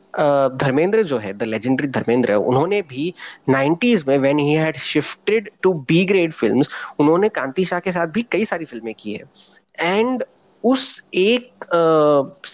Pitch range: 140-210 Hz